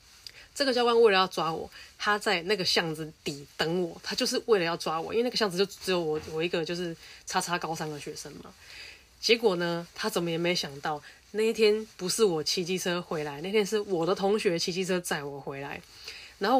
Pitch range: 160-195 Hz